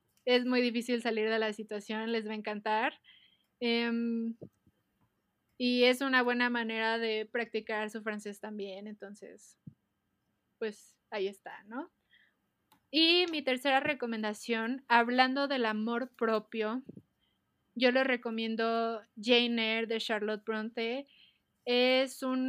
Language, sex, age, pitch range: Spanish, female, 20-39, 220-255 Hz